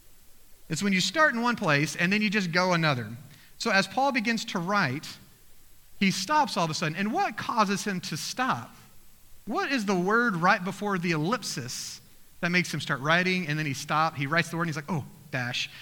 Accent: American